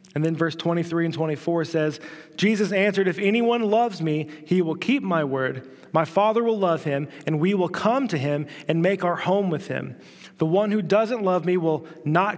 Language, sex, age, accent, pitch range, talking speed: English, male, 30-49, American, 160-205 Hz, 210 wpm